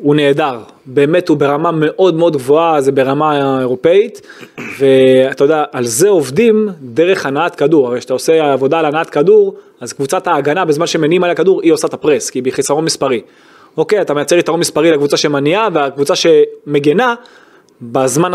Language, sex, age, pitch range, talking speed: Hebrew, male, 20-39, 145-215 Hz, 165 wpm